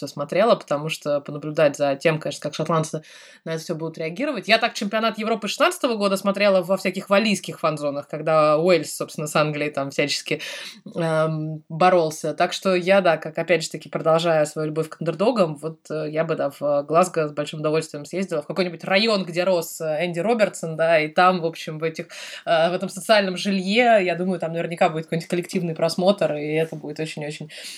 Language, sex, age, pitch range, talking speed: Russian, female, 20-39, 160-205 Hz, 195 wpm